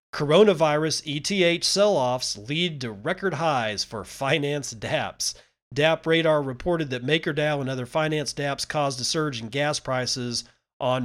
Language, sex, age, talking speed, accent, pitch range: English, male, 40-59, 145 wpm, American, 115-150 Hz